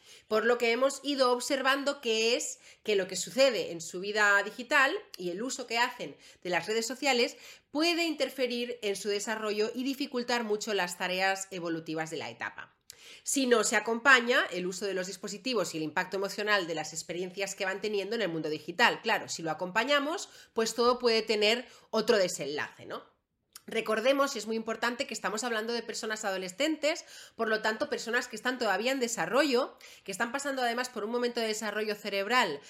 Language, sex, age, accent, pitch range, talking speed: Spanish, female, 30-49, Spanish, 195-250 Hz, 190 wpm